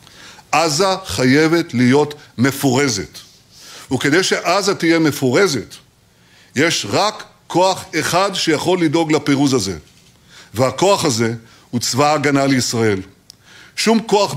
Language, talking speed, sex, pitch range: Hebrew, 100 wpm, male, 120-165 Hz